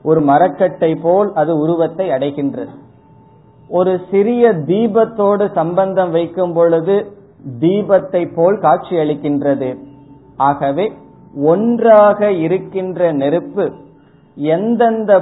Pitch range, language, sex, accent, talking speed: 140-185 Hz, Tamil, male, native, 85 wpm